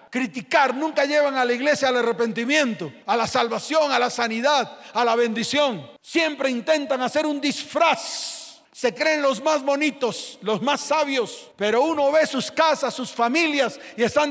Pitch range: 195-285 Hz